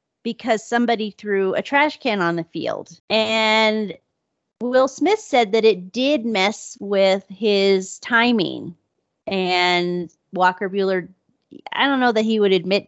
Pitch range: 195-250 Hz